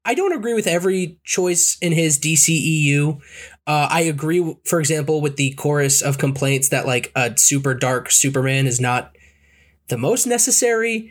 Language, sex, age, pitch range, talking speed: English, male, 20-39, 135-180 Hz, 160 wpm